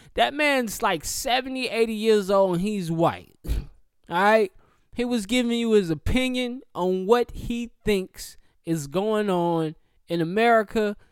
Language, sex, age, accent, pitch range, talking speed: English, male, 20-39, American, 145-240 Hz, 145 wpm